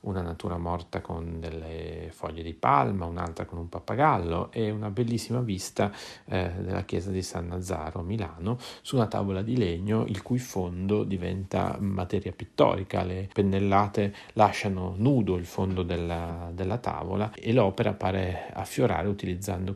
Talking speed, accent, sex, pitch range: 150 wpm, native, male, 85-100 Hz